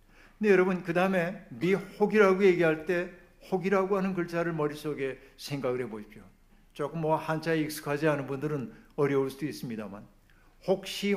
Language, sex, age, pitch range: Korean, male, 60-79, 140-180 Hz